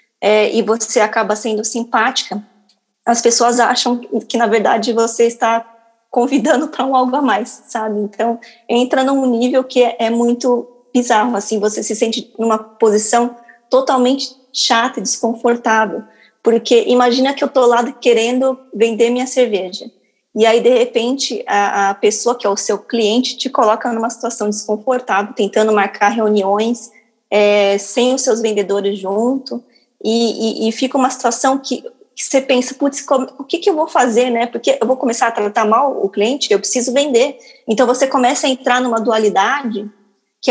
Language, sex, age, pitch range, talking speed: Portuguese, female, 20-39, 220-255 Hz, 170 wpm